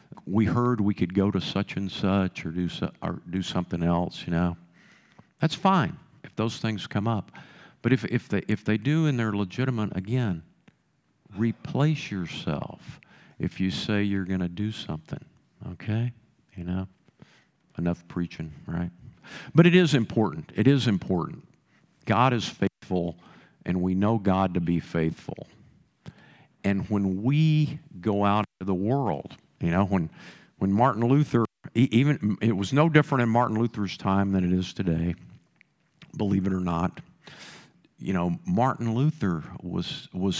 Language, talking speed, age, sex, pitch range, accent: English, 160 wpm, 50-69, male, 95-120 Hz, American